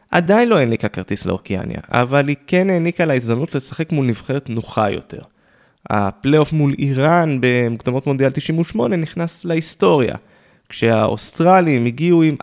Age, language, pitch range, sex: 20-39, Hebrew, 110-155 Hz, male